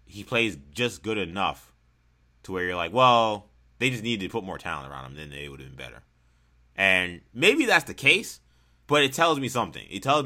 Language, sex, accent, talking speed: English, male, American, 215 wpm